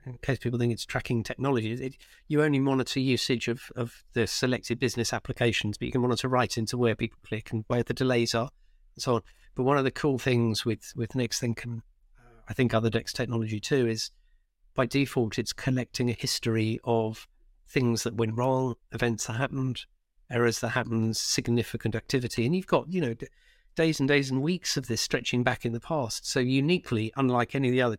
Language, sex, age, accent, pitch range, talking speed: English, male, 50-69, British, 115-130 Hz, 205 wpm